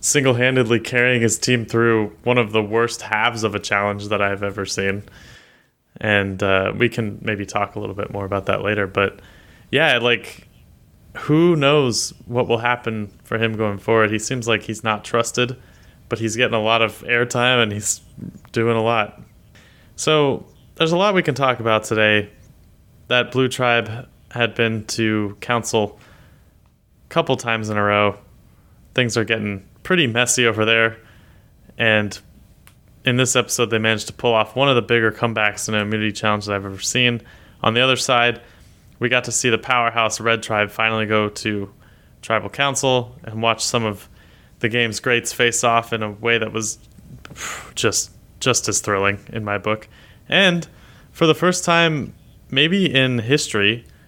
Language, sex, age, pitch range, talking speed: English, male, 20-39, 105-125 Hz, 175 wpm